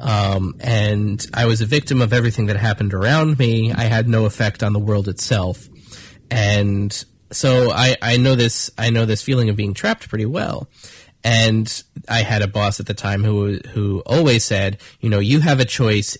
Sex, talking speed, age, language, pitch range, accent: male, 195 wpm, 20-39, English, 105-125 Hz, American